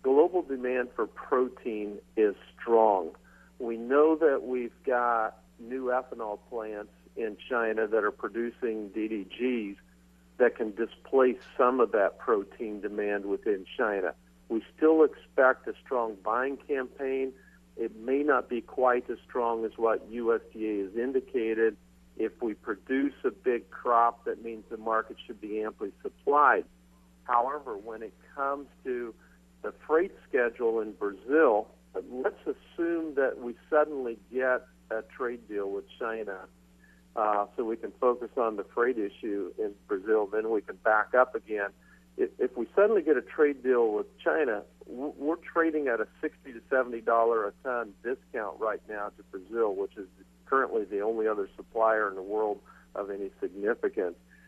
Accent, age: American, 50-69